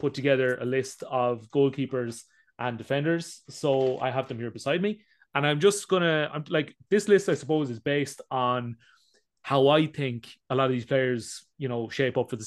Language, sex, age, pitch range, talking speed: English, male, 30-49, 120-155 Hz, 200 wpm